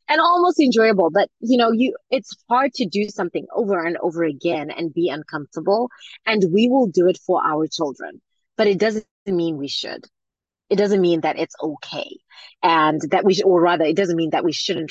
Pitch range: 160-220 Hz